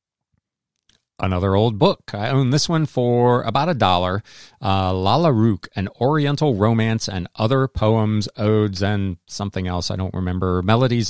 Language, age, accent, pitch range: English, 40-59, American, 100-130 Hz